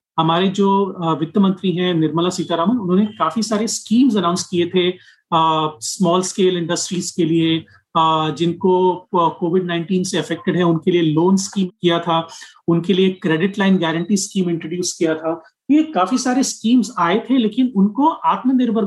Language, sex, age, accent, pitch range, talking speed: Hindi, male, 40-59, native, 170-215 Hz, 160 wpm